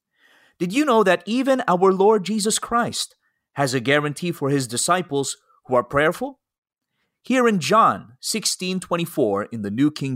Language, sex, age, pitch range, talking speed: English, male, 30-49, 130-190 Hz, 155 wpm